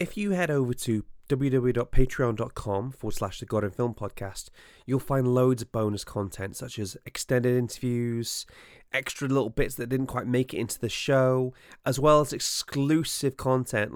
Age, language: 30-49, English